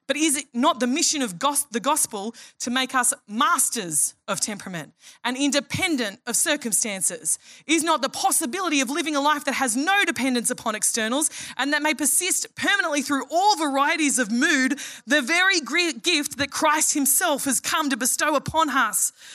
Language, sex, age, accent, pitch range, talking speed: English, female, 20-39, Australian, 225-285 Hz, 170 wpm